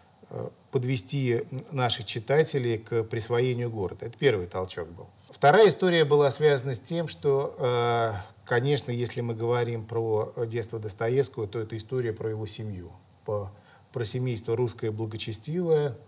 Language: Russian